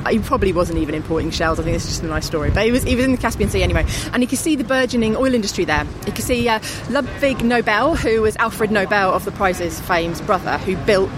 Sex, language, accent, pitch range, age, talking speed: female, English, British, 175-220 Hz, 30-49, 270 wpm